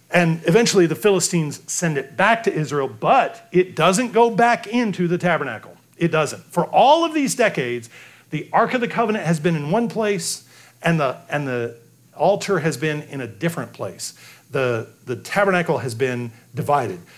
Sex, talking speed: male, 180 wpm